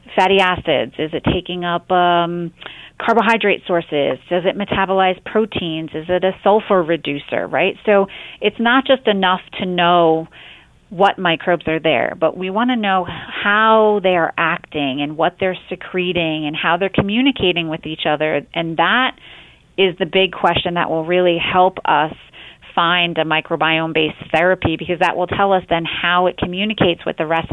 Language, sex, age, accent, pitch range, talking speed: English, female, 30-49, American, 160-190 Hz, 165 wpm